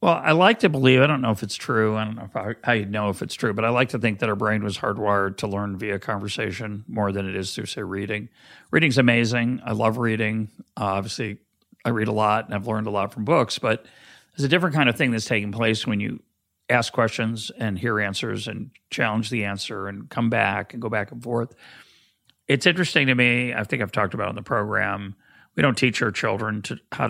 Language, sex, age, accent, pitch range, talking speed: English, male, 40-59, American, 105-120 Hz, 235 wpm